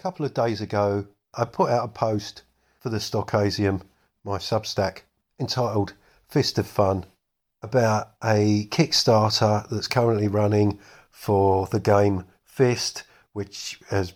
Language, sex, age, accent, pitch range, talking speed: English, male, 50-69, British, 95-115 Hz, 130 wpm